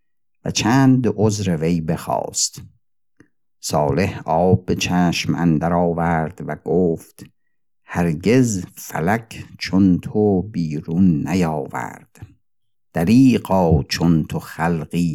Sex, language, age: male, Persian, 50-69